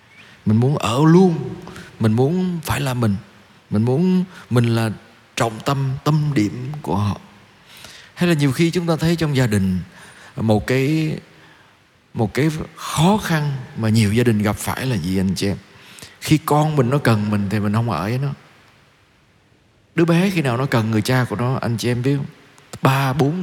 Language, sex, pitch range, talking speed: Vietnamese, male, 110-155 Hz, 190 wpm